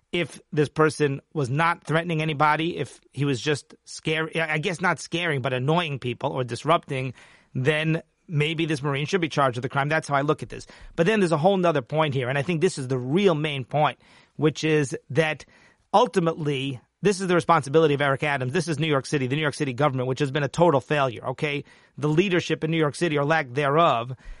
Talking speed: 225 wpm